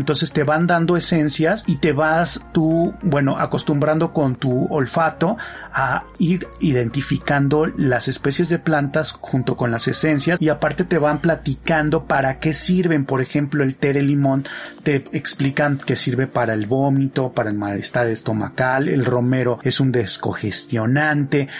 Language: Spanish